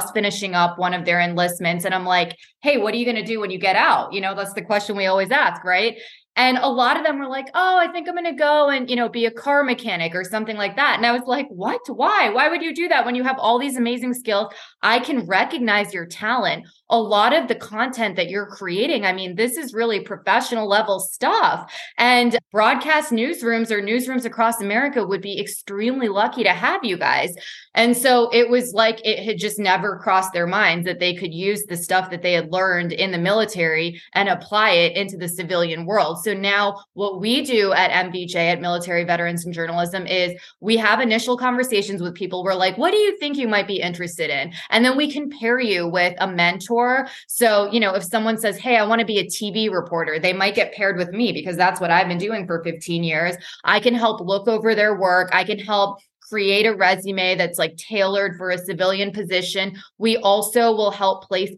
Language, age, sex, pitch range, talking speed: English, 20-39, female, 185-235 Hz, 225 wpm